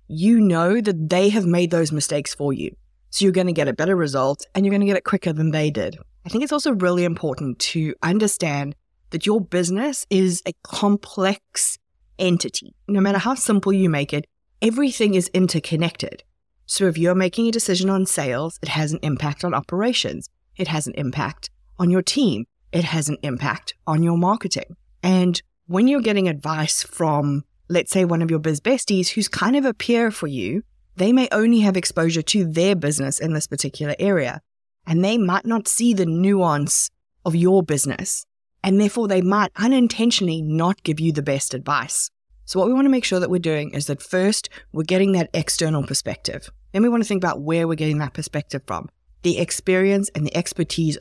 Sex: female